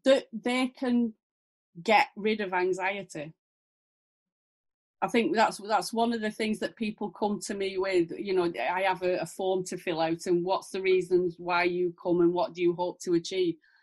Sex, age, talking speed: female, 30-49, 195 wpm